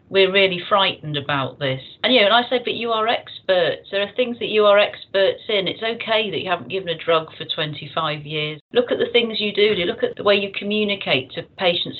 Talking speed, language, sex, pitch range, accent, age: 240 wpm, English, female, 165-215 Hz, British, 40-59